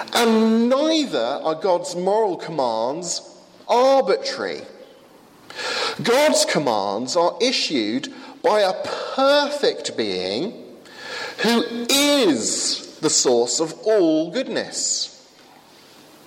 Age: 40-59